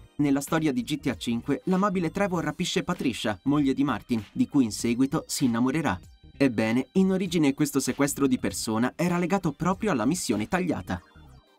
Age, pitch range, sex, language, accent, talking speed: 30-49, 125-185 Hz, male, Italian, native, 160 wpm